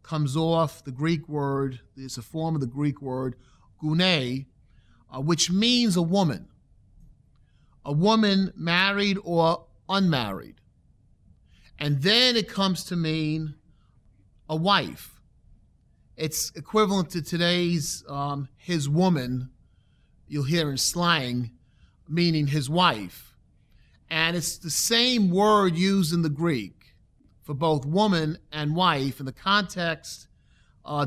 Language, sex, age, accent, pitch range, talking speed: English, male, 40-59, American, 130-170 Hz, 120 wpm